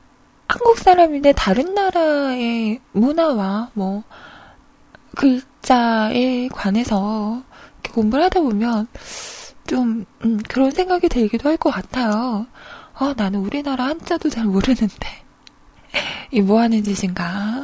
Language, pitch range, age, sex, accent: Korean, 220-320 Hz, 20-39, female, native